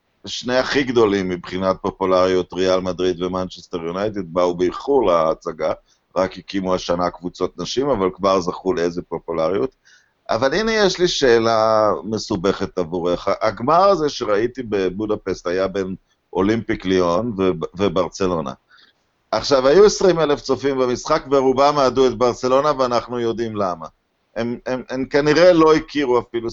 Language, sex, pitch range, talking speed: Hebrew, male, 100-150 Hz, 135 wpm